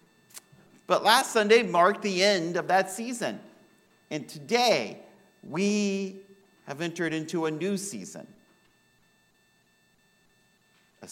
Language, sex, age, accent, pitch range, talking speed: English, male, 50-69, American, 175-215 Hz, 105 wpm